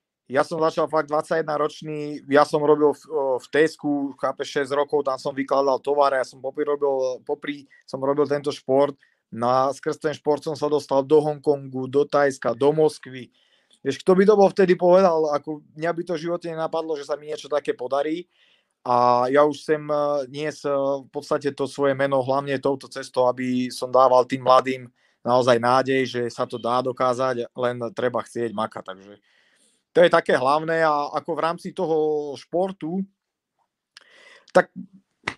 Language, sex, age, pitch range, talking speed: Czech, male, 30-49, 135-160 Hz, 170 wpm